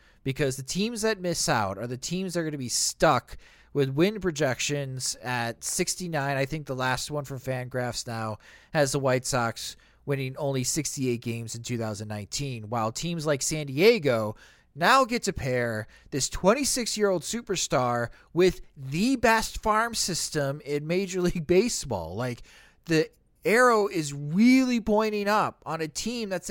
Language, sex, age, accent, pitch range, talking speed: English, male, 30-49, American, 120-180 Hz, 160 wpm